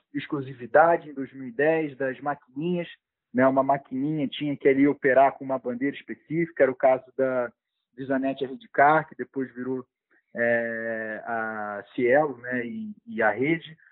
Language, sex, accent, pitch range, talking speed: Portuguese, male, Brazilian, 135-160 Hz, 145 wpm